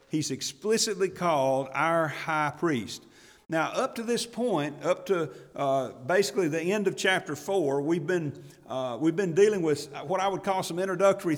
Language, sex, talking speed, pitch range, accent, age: English, male, 175 wpm, 140-185 Hz, American, 50-69